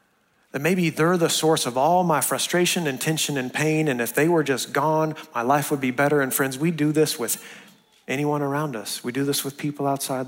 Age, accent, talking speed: 40-59, American, 230 wpm